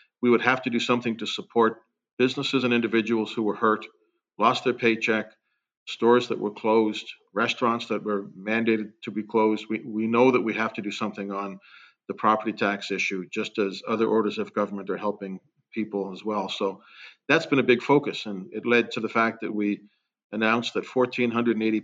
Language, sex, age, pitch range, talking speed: English, male, 50-69, 105-120 Hz, 190 wpm